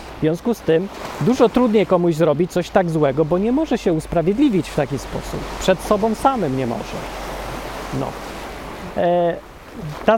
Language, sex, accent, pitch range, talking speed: Polish, male, native, 160-210 Hz, 160 wpm